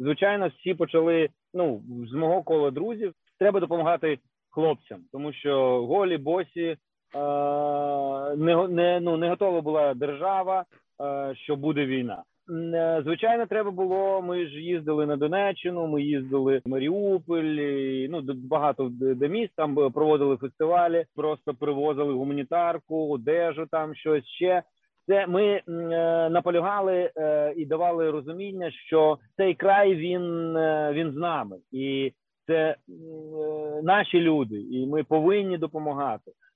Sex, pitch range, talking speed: male, 145-175 Hz, 120 wpm